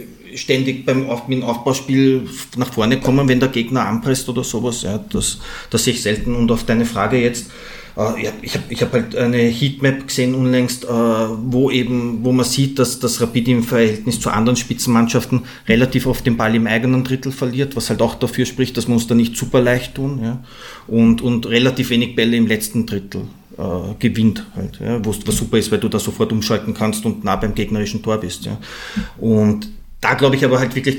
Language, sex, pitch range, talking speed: German, male, 110-125 Hz, 205 wpm